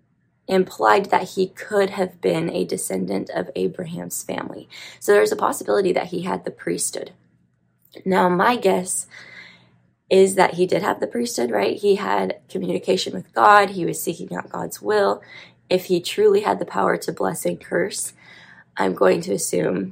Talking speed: 170 wpm